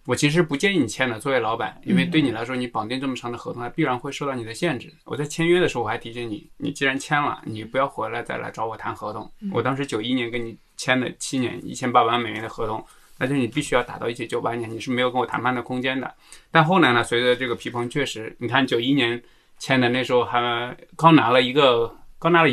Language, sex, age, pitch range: Chinese, male, 20-39, 120-155 Hz